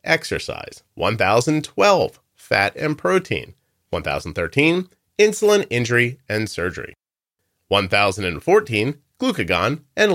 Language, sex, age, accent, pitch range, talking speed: English, male, 30-49, American, 100-140 Hz, 75 wpm